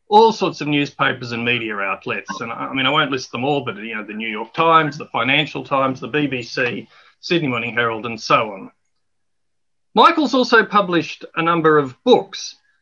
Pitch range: 130-170 Hz